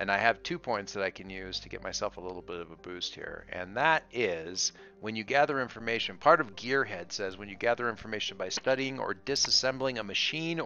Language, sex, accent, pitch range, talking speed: English, male, American, 100-130 Hz, 225 wpm